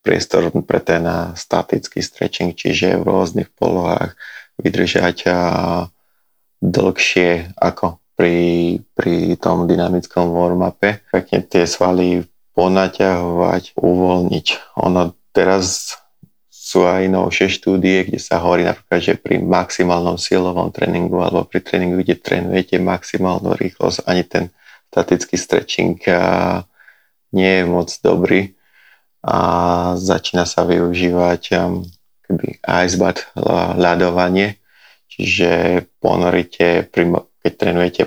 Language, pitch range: Slovak, 85-90 Hz